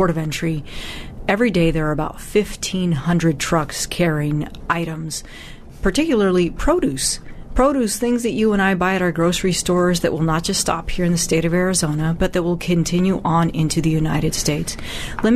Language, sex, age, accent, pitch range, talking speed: English, female, 30-49, American, 160-190 Hz, 175 wpm